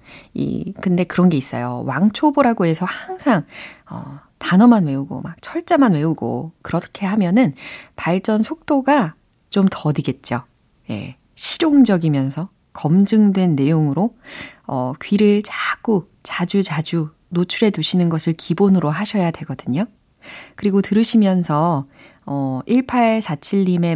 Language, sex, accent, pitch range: Korean, female, native, 145-210 Hz